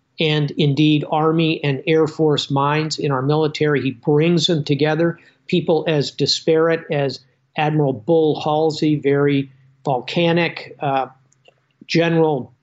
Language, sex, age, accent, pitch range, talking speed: English, male, 50-69, American, 140-165 Hz, 120 wpm